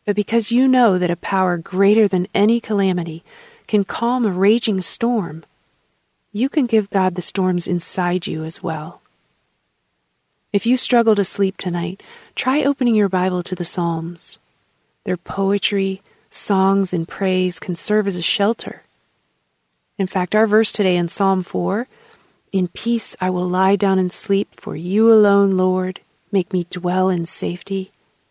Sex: female